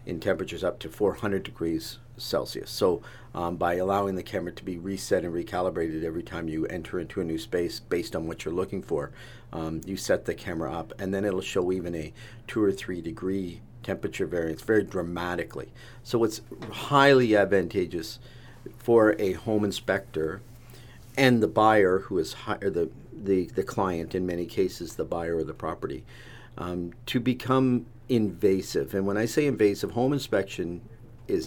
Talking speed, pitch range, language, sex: 170 wpm, 85-115 Hz, English, male